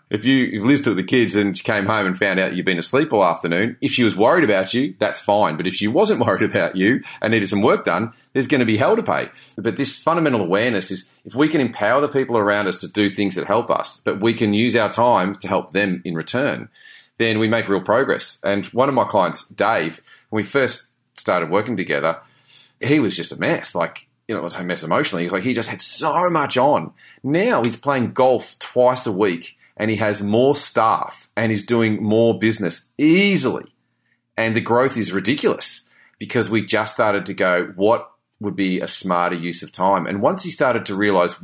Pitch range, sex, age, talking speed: 100-125 Hz, male, 30-49, 225 wpm